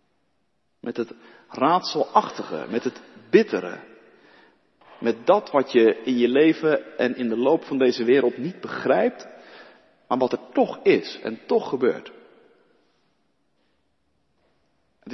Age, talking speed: 50-69, 125 wpm